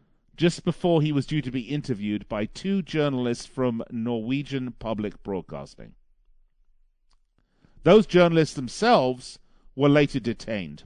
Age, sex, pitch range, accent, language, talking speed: 50-69, male, 125-195 Hz, British, English, 115 wpm